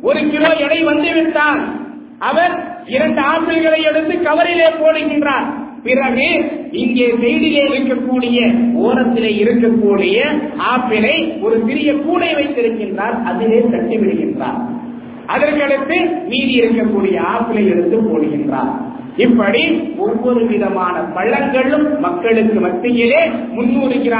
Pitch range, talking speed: 230-305 Hz, 95 wpm